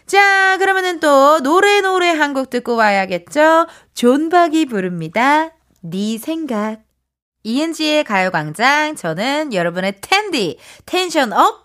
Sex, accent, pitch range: female, native, 210-345 Hz